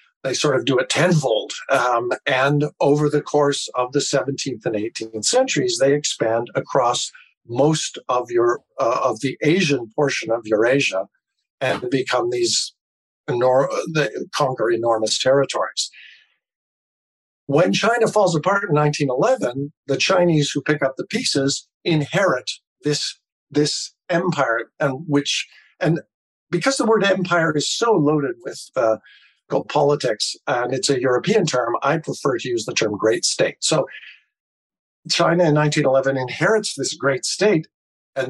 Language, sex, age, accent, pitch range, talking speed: English, male, 50-69, American, 130-175 Hz, 140 wpm